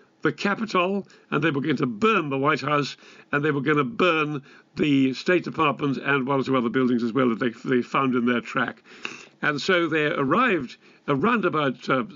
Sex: male